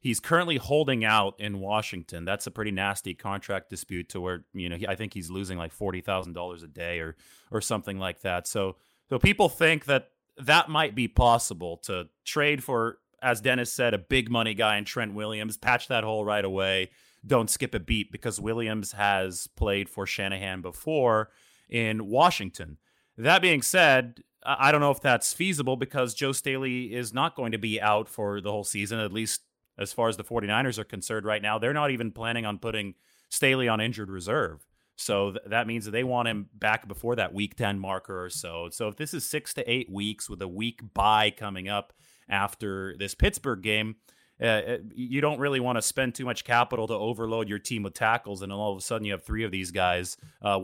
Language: English